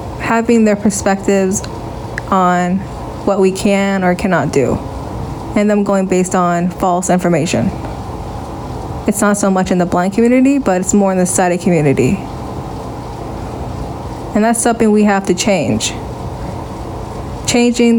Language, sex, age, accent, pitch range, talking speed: English, female, 20-39, American, 175-210 Hz, 135 wpm